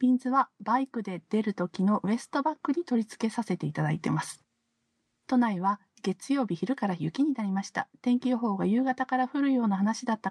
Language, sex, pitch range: Japanese, female, 200-260 Hz